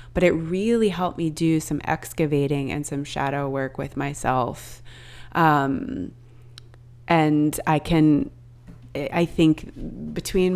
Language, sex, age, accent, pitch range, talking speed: English, female, 20-39, American, 120-160 Hz, 120 wpm